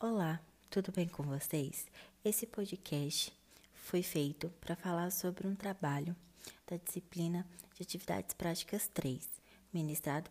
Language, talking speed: Portuguese, 120 wpm